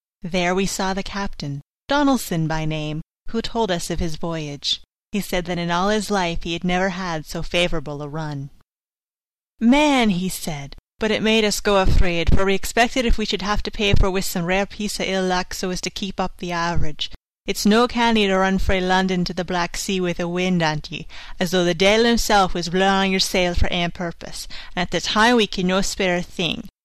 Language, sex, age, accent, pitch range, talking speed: English, female, 30-49, American, 180-215 Hz, 225 wpm